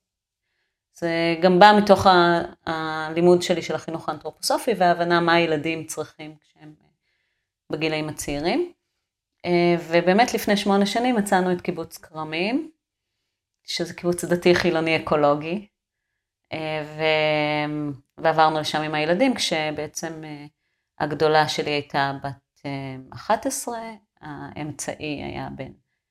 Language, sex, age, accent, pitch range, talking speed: Hebrew, female, 30-49, native, 150-180 Hz, 95 wpm